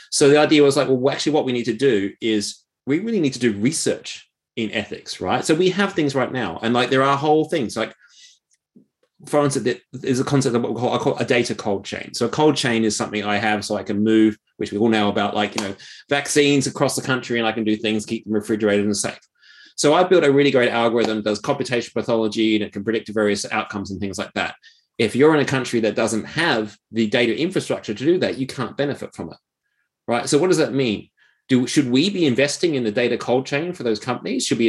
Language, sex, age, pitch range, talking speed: English, male, 30-49, 110-140 Hz, 250 wpm